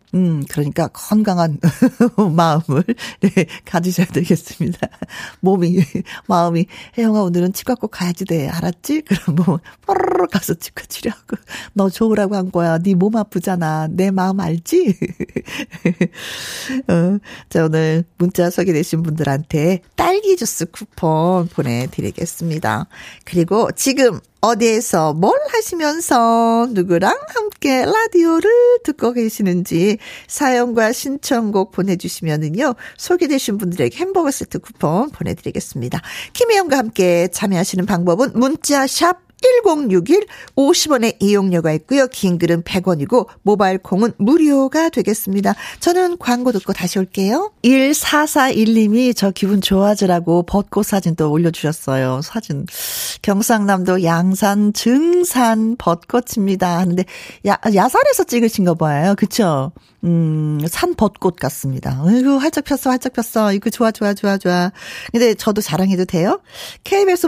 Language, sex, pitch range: Korean, female, 175-250 Hz